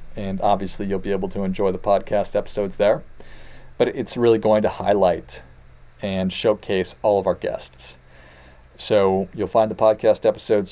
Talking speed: 160 wpm